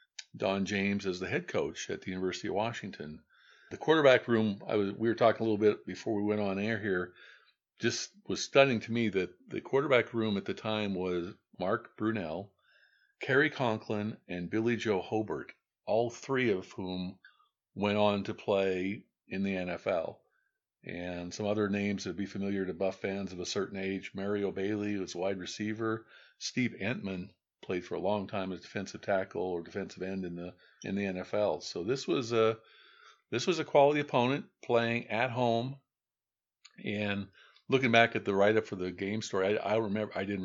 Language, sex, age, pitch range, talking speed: English, male, 50-69, 95-115 Hz, 185 wpm